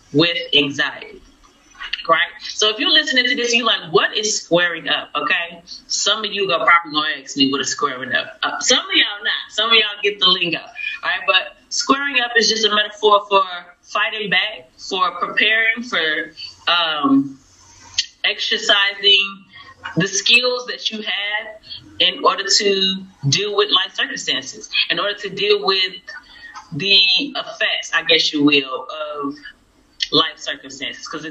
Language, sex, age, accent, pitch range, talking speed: English, female, 30-49, American, 165-265 Hz, 155 wpm